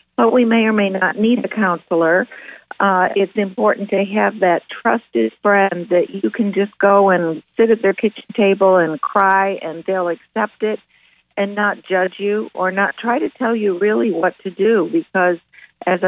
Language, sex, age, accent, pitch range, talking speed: English, female, 50-69, American, 180-215 Hz, 185 wpm